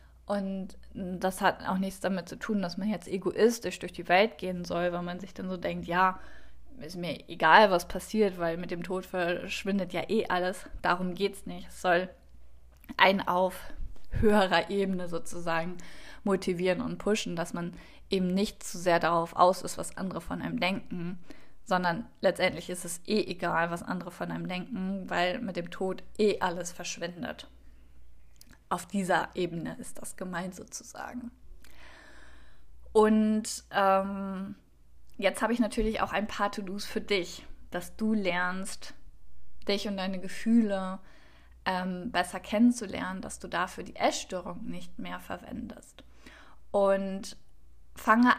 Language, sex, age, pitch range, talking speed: German, female, 20-39, 175-205 Hz, 150 wpm